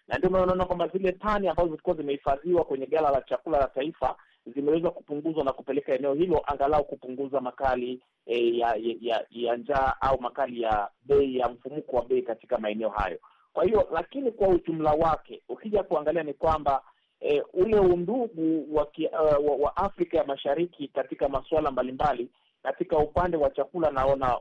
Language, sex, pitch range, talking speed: Swahili, male, 125-155 Hz, 165 wpm